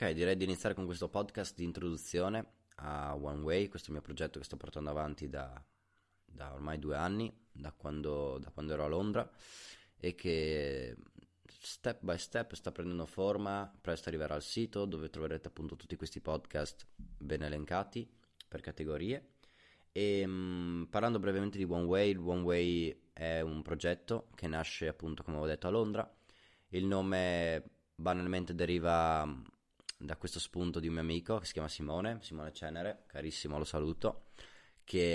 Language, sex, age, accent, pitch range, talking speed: Italian, male, 20-39, native, 80-90 Hz, 165 wpm